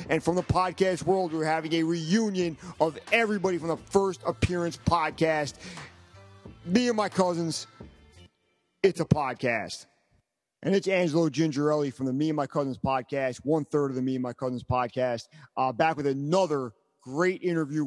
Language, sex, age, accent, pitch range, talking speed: English, male, 40-59, American, 130-165 Hz, 160 wpm